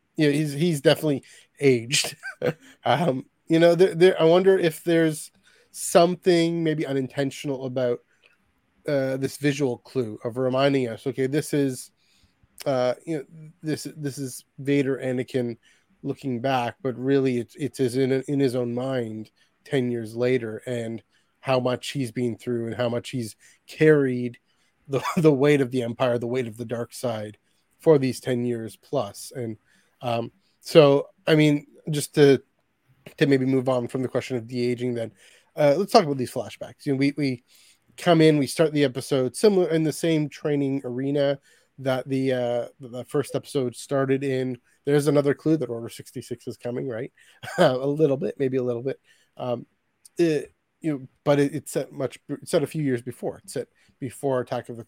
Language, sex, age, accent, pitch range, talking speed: English, male, 20-39, American, 125-145 Hz, 170 wpm